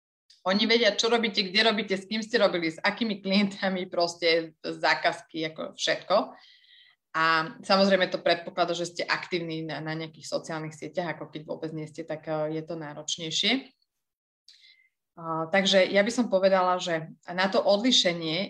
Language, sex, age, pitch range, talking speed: Slovak, female, 20-39, 170-200 Hz, 150 wpm